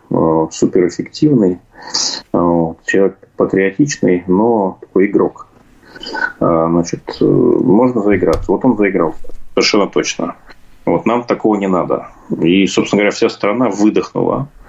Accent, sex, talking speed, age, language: native, male, 100 wpm, 30-49, Russian